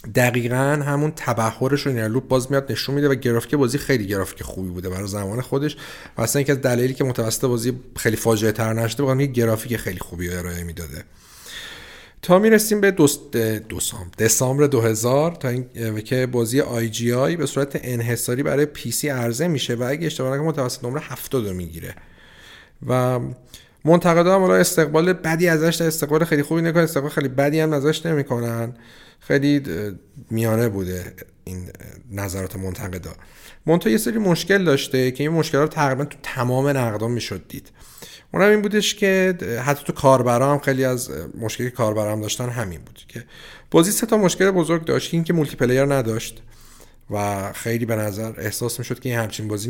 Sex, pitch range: male, 110-145 Hz